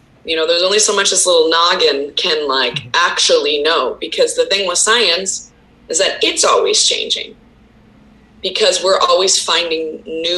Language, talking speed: English, 160 wpm